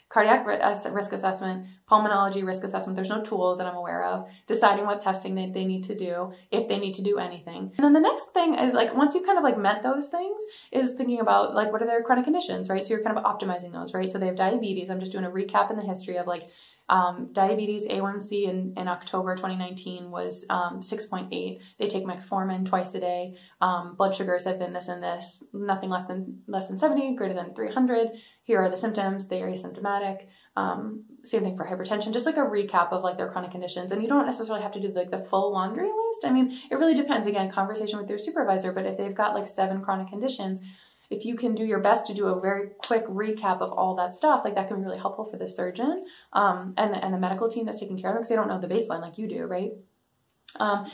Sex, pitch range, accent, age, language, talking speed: female, 185-225 Hz, American, 20-39, English, 240 wpm